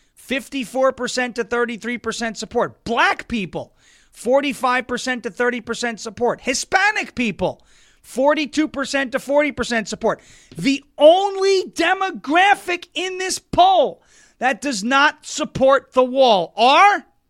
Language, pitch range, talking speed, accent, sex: English, 205-290 Hz, 95 wpm, American, male